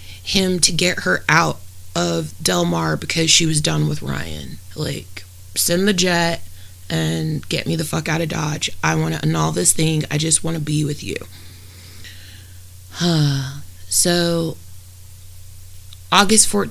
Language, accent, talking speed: English, American, 150 wpm